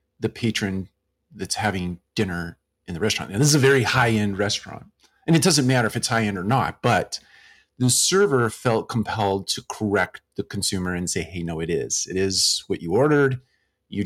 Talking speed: 190 wpm